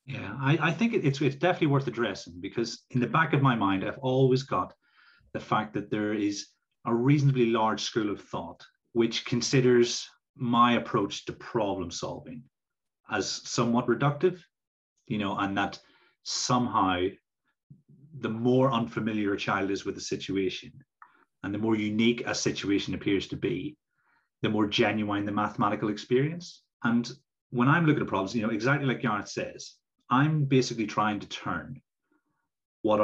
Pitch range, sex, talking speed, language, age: 100-130 Hz, male, 160 wpm, English, 30-49